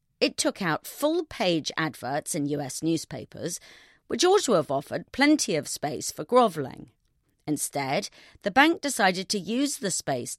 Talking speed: 150 wpm